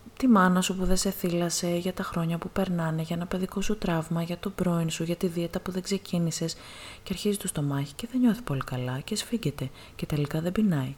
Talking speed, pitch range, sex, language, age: 230 wpm, 145-185 Hz, female, Greek, 20-39